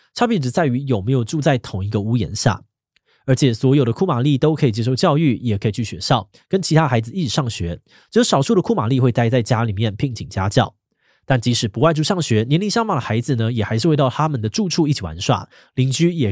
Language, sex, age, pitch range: Chinese, male, 20-39, 110-155 Hz